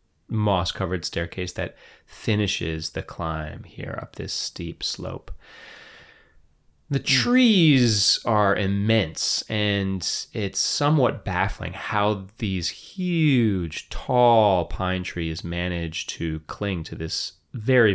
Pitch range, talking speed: 80-110 Hz, 105 wpm